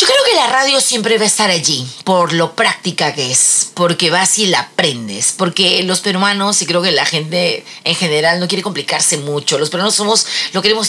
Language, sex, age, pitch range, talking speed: Spanish, female, 40-59, 155-190 Hz, 215 wpm